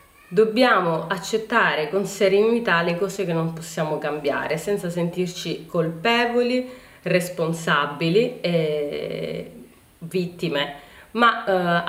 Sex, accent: female, native